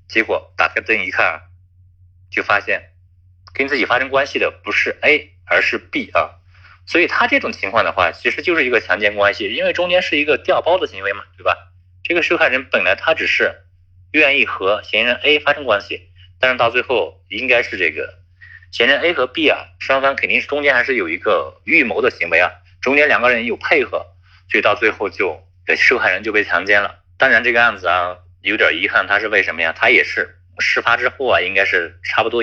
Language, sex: Chinese, male